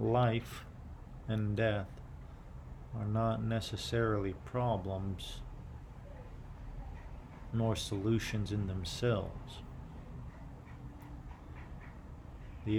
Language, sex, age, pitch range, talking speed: English, male, 40-59, 75-110 Hz, 55 wpm